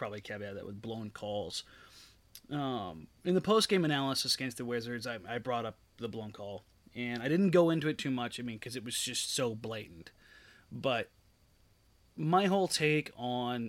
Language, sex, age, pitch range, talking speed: English, male, 30-49, 115-145 Hz, 190 wpm